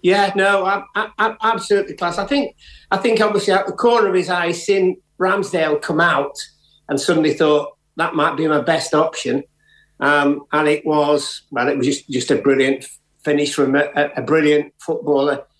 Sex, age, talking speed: male, 50-69, 185 wpm